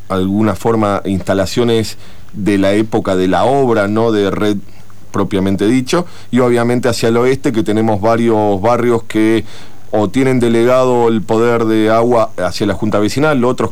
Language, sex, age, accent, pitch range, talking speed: Spanish, male, 40-59, Argentinian, 100-120 Hz, 160 wpm